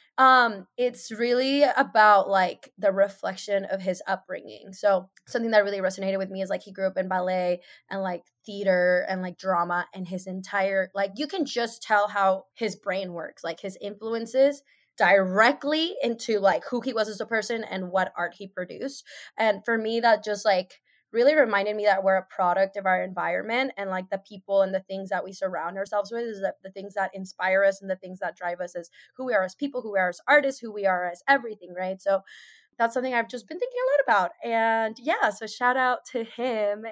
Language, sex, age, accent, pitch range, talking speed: English, female, 20-39, American, 190-245 Hz, 220 wpm